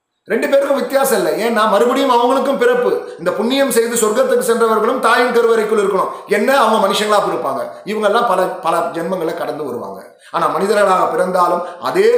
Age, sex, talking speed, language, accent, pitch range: 30-49, male, 155 wpm, Tamil, native, 190-265 Hz